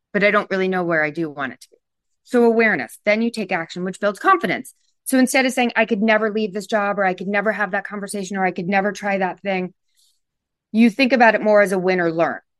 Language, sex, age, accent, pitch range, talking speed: English, female, 30-49, American, 185-225 Hz, 260 wpm